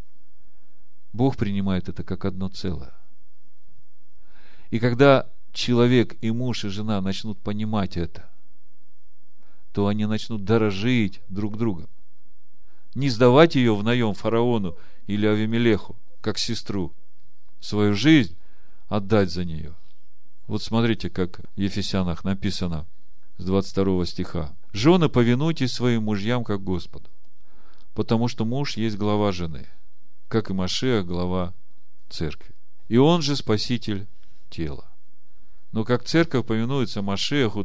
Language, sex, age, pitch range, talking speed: Russian, male, 40-59, 95-125 Hz, 115 wpm